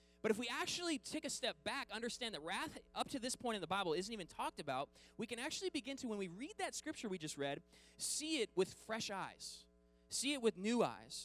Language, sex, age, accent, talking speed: English, male, 20-39, American, 240 wpm